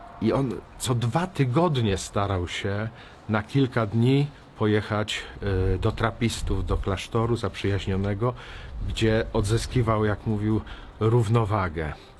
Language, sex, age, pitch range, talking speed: Polish, male, 50-69, 100-130 Hz, 105 wpm